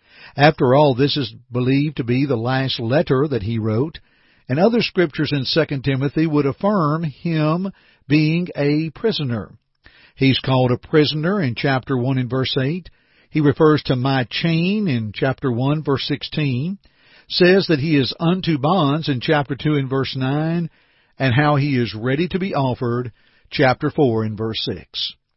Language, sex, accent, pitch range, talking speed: English, male, American, 130-170 Hz, 165 wpm